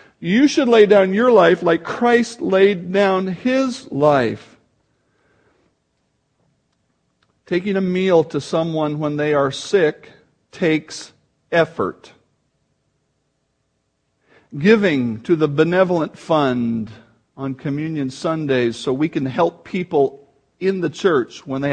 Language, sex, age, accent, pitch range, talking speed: English, male, 50-69, American, 150-220 Hz, 115 wpm